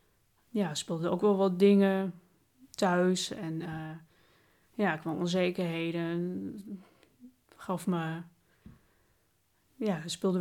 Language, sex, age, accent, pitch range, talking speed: Dutch, female, 20-39, Dutch, 175-195 Hz, 90 wpm